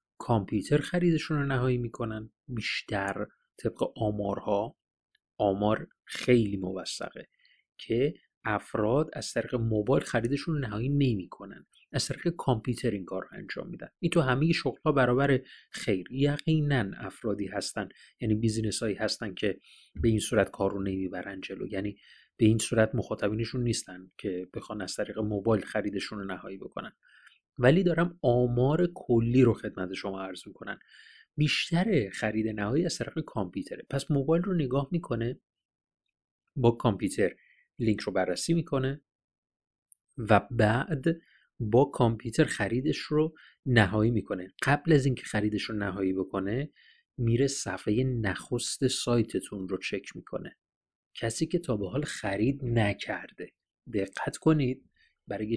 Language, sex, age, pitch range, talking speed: Persian, male, 30-49, 105-140 Hz, 130 wpm